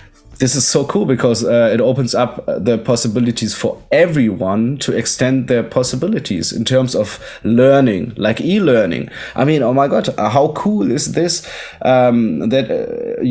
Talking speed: 160 wpm